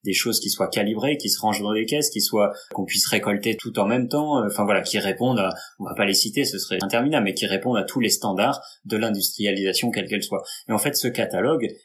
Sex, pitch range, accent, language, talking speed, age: male, 100-120 Hz, French, French, 260 wpm, 30-49